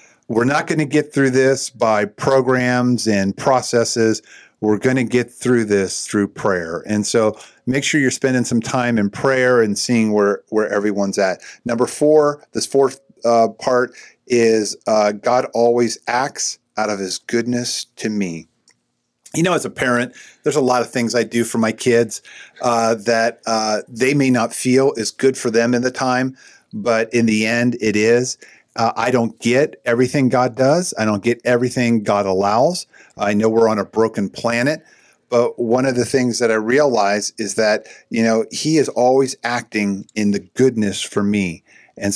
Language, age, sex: English, 50-69, male